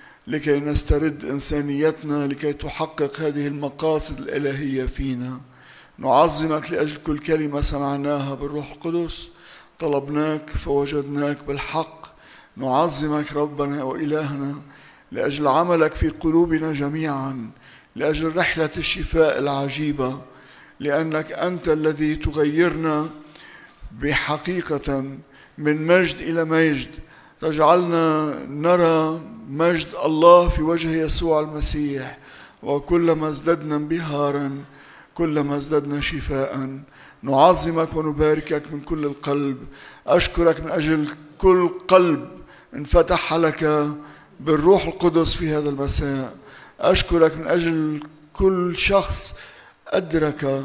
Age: 50-69